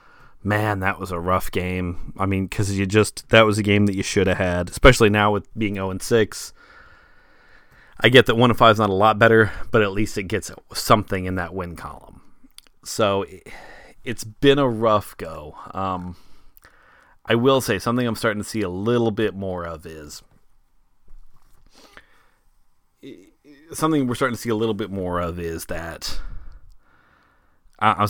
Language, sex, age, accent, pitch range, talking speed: English, male, 30-49, American, 90-115 Hz, 165 wpm